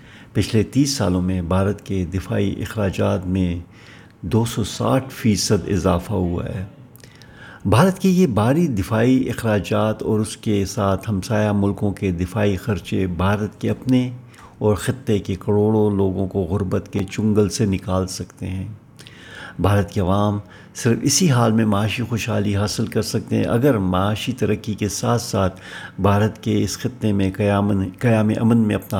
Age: 50-69